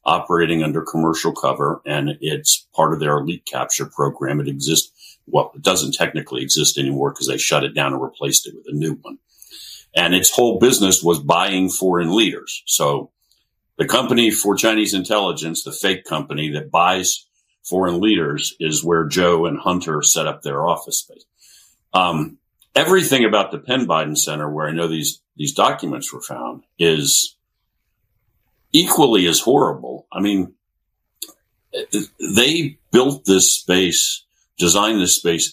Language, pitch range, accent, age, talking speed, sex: English, 80-95 Hz, American, 50-69, 155 wpm, male